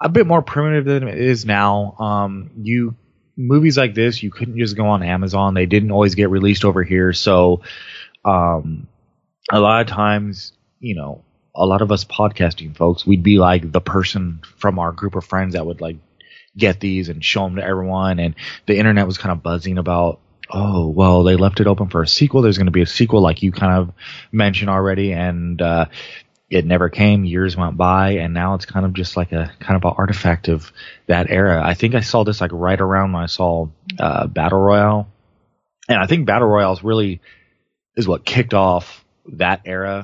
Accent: American